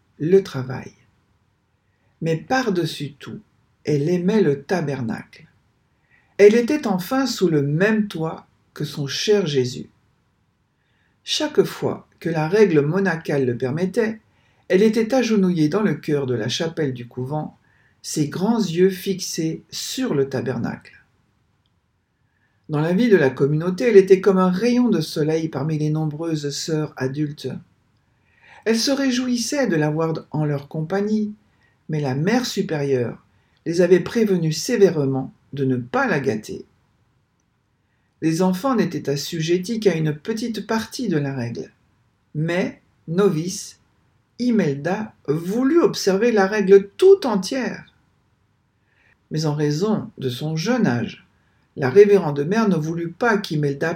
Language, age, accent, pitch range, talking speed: French, 60-79, French, 140-200 Hz, 130 wpm